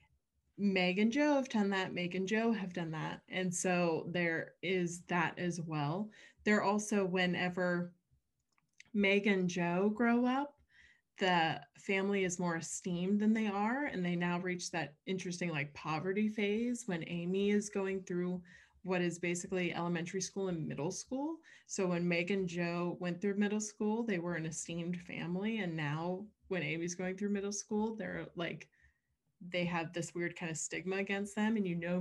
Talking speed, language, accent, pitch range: 175 wpm, English, American, 170-200 Hz